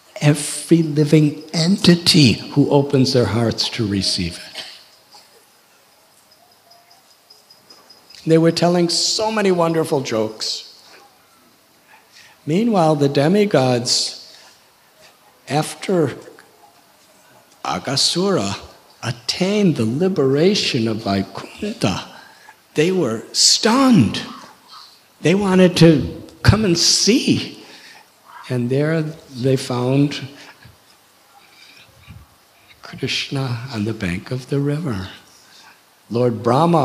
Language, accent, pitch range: English, American, 125-165 Hz